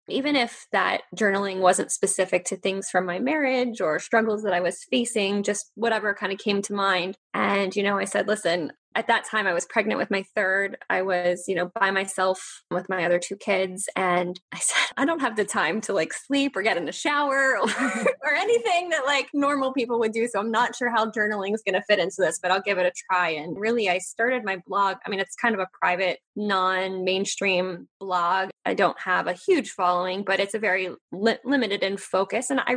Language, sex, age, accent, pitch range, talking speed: English, female, 10-29, American, 185-235 Hz, 225 wpm